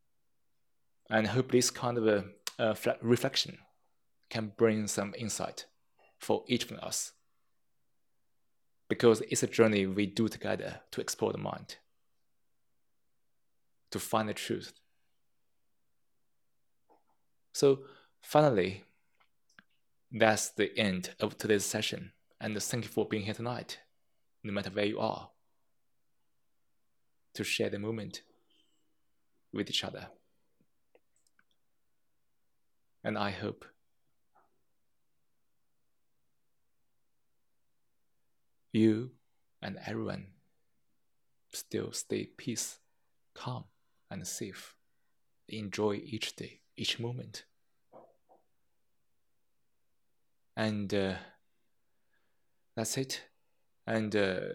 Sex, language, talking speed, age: male, English, 90 wpm, 20-39